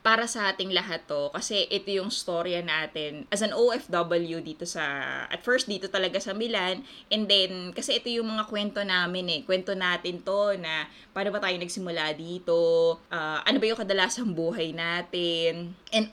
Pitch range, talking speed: 175-215 Hz, 175 wpm